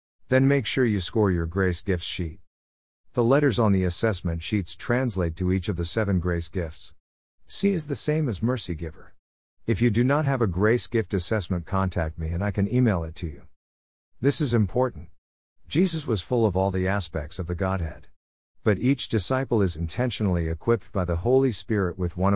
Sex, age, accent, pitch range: male, 50-69, American, 85-115 Hz